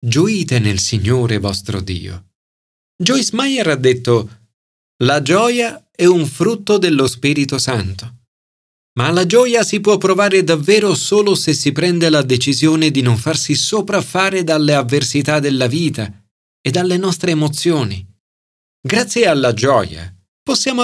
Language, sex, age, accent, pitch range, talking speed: Italian, male, 40-59, native, 115-175 Hz, 130 wpm